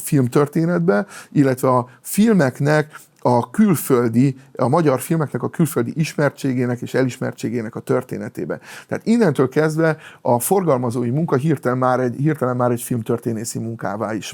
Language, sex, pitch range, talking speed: Hungarian, male, 120-145 Hz, 130 wpm